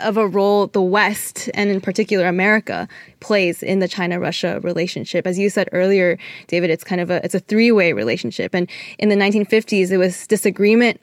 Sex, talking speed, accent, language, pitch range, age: female, 185 wpm, American, English, 185-215 Hz, 20-39